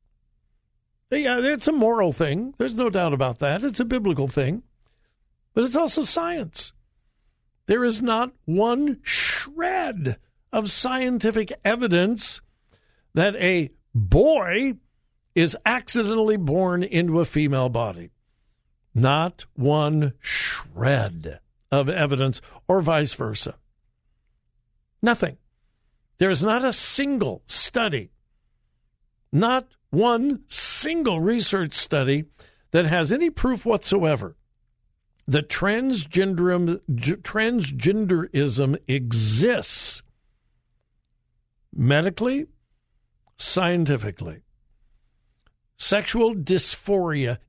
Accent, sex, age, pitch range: American, male, 60-79, 140-225 Hz